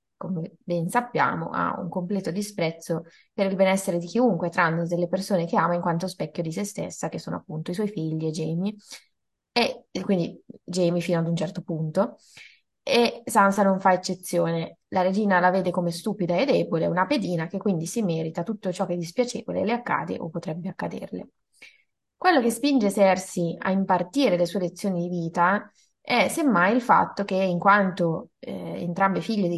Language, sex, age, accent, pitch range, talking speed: Italian, female, 20-39, native, 165-200 Hz, 185 wpm